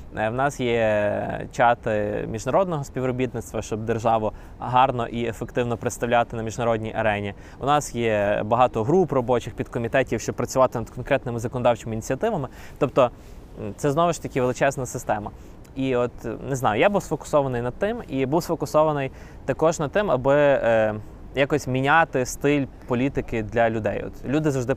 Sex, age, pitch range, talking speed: male, 20-39, 110-135 Hz, 150 wpm